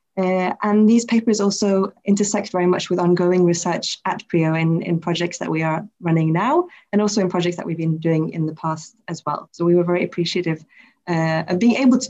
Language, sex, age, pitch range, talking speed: English, female, 20-39, 175-220 Hz, 220 wpm